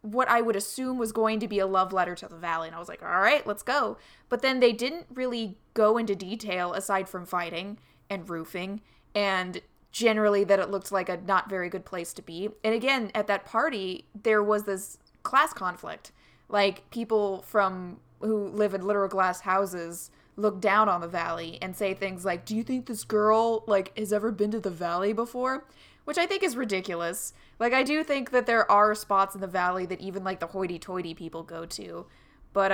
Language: English